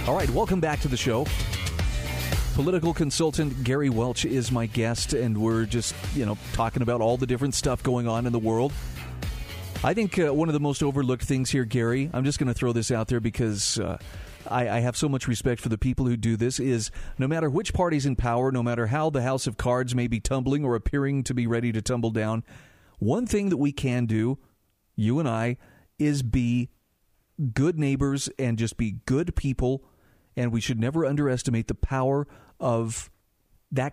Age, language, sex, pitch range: 30-49, English, male, 115-140 Hz